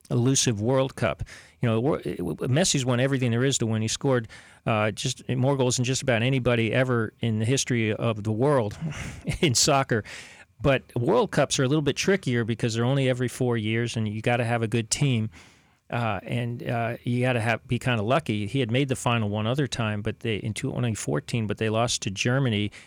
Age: 40-59